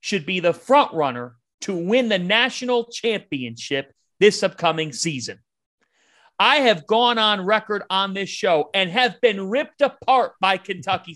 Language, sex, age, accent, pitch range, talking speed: English, male, 40-59, American, 190-245 Hz, 150 wpm